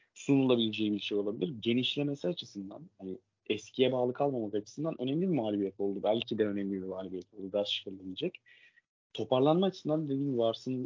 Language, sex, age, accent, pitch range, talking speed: Turkish, male, 30-49, native, 105-125 Hz, 150 wpm